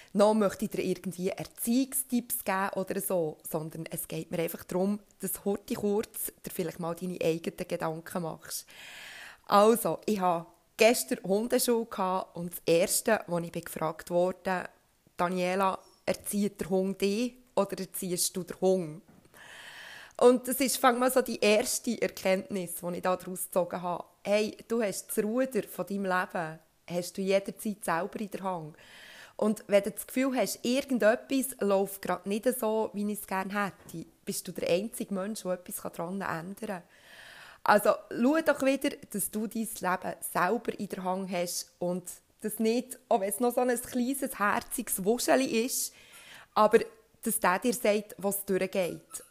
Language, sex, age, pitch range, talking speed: German, female, 20-39, 185-225 Hz, 165 wpm